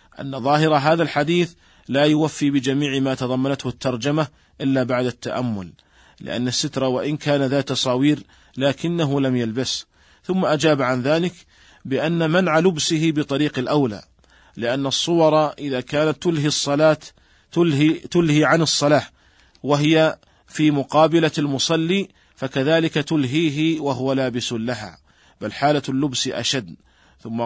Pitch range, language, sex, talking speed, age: 125-150 Hz, Arabic, male, 120 wpm, 40-59